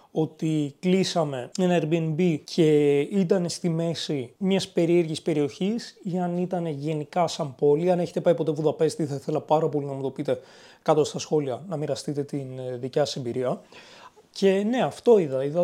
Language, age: Greek, 30-49